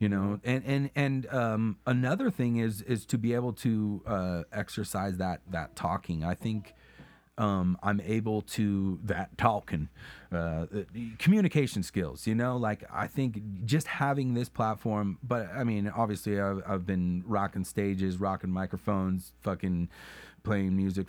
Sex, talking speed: male, 150 wpm